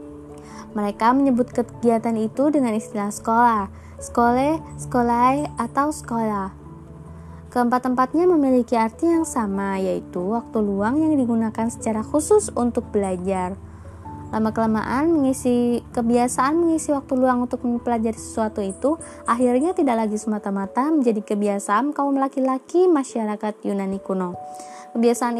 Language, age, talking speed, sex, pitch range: Indonesian, 20-39, 110 wpm, female, 205-265 Hz